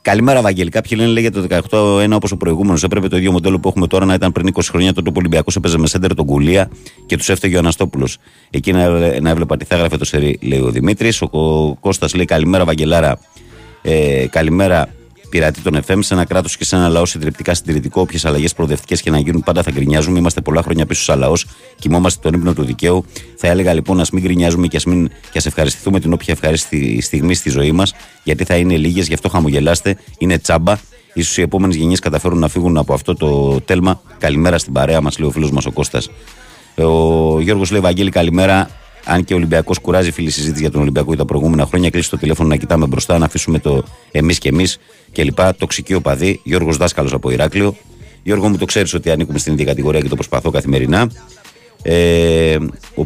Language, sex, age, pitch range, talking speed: Greek, male, 30-49, 80-95 Hz, 205 wpm